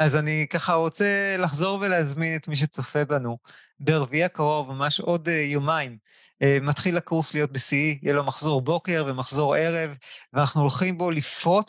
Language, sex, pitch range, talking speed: Hebrew, male, 140-170 Hz, 150 wpm